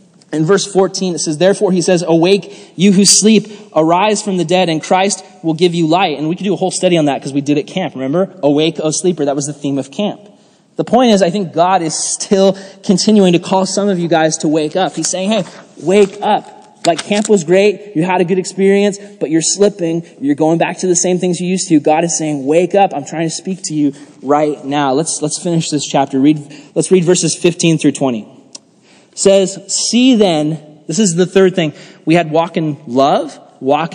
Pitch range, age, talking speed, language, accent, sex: 150-190 Hz, 20-39, 230 wpm, English, American, male